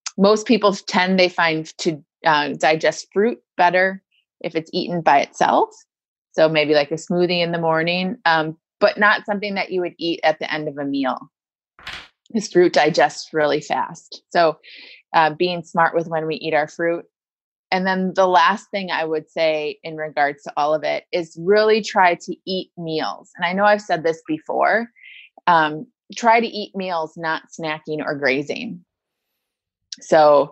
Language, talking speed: English, 175 wpm